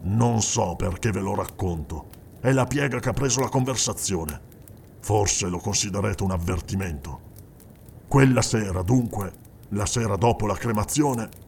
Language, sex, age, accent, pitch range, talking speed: Italian, male, 50-69, native, 95-120 Hz, 140 wpm